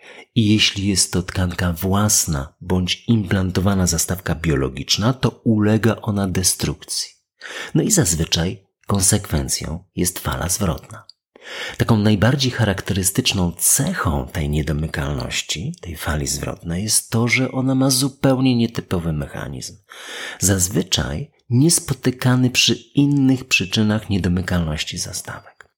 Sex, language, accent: male, Polish, native